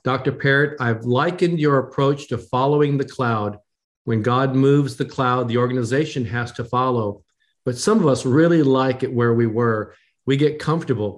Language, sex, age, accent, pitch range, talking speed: English, male, 50-69, American, 120-140 Hz, 175 wpm